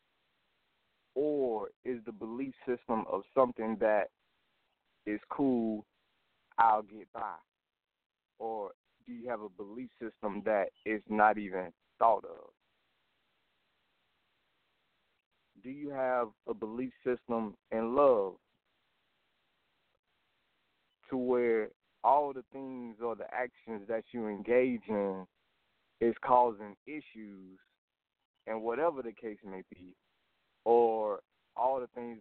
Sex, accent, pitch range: male, American, 105-125 Hz